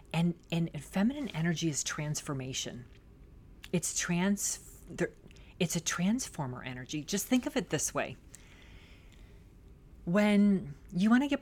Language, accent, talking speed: English, American, 120 wpm